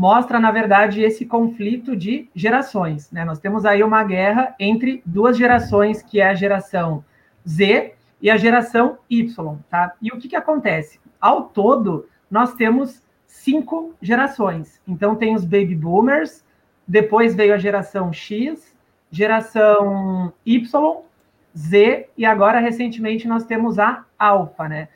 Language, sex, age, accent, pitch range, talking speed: Portuguese, male, 40-59, Brazilian, 200-250 Hz, 135 wpm